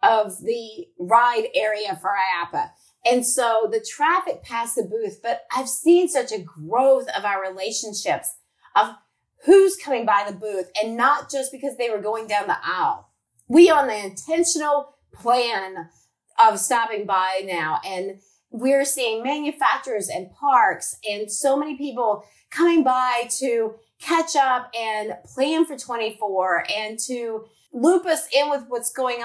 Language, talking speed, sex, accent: English, 150 wpm, female, American